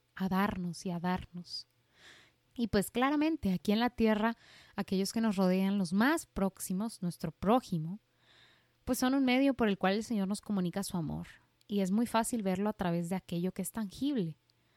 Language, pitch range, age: Spanish, 180-230 Hz, 20-39